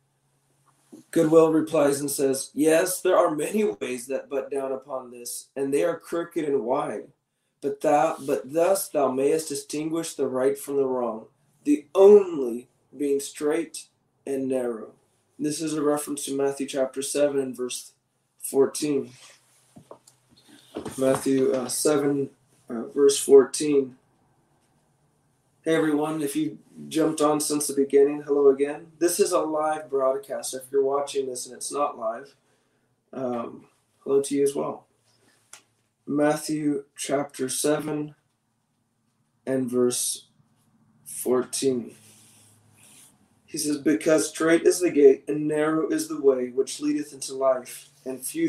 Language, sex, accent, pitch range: English, male, American, 130-155 Hz